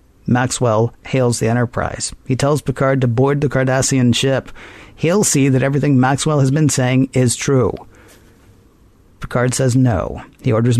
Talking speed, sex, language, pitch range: 150 wpm, male, English, 115-135 Hz